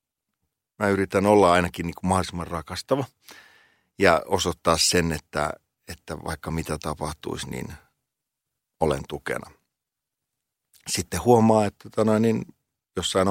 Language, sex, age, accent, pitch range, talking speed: Finnish, male, 50-69, native, 80-95 Hz, 115 wpm